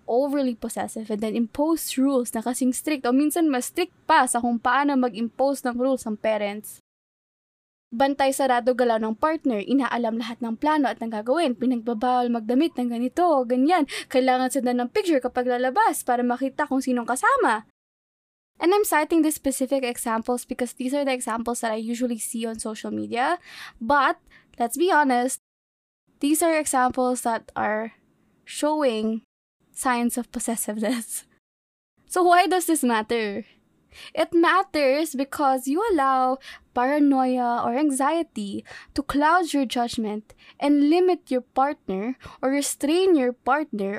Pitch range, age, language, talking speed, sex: 235-300 Hz, 20-39, Filipino, 145 wpm, female